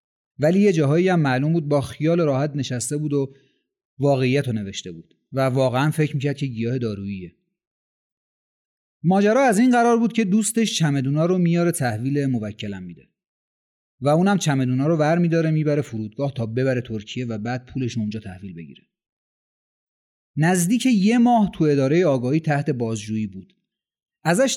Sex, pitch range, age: male, 125-180 Hz, 30-49